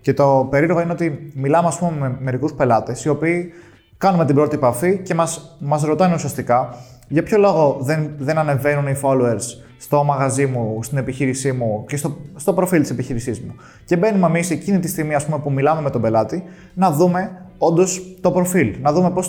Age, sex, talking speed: 20-39, male, 195 wpm